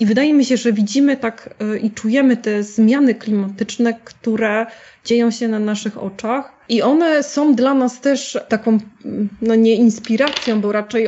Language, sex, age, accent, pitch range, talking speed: Polish, female, 20-39, native, 220-265 Hz, 160 wpm